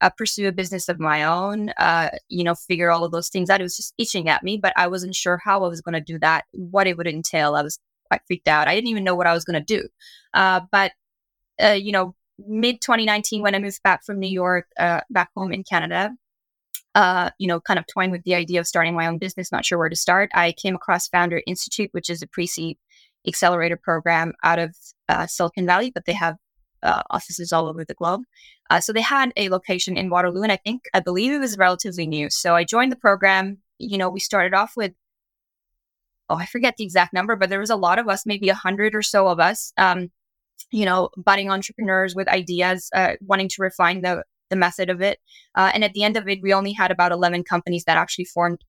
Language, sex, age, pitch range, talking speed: English, female, 20-39, 175-200 Hz, 240 wpm